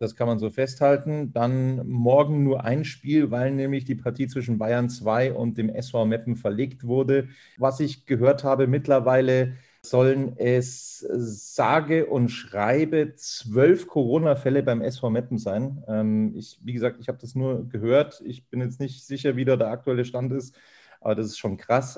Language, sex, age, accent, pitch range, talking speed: German, male, 40-59, German, 115-140 Hz, 170 wpm